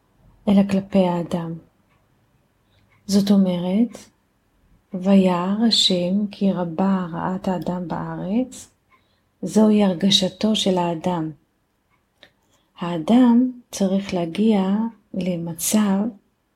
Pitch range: 180-205 Hz